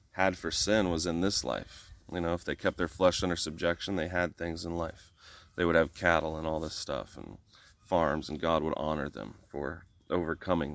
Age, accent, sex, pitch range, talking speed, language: 30-49, American, male, 80-95 Hz, 210 wpm, English